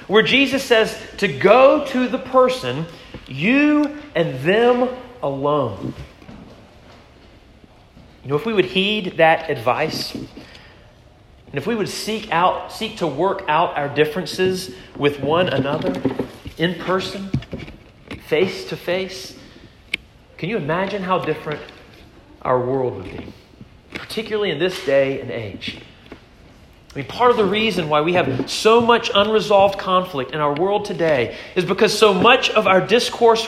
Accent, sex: American, male